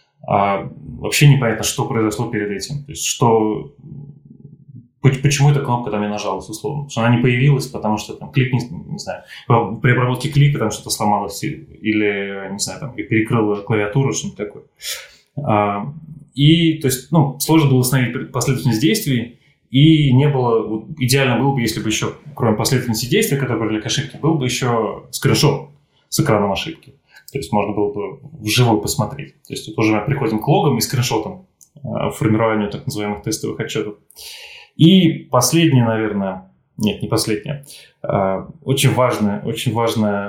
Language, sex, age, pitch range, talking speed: Russian, male, 20-39, 110-140 Hz, 160 wpm